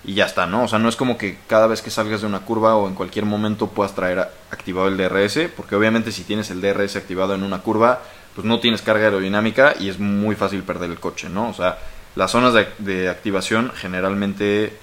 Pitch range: 95-115 Hz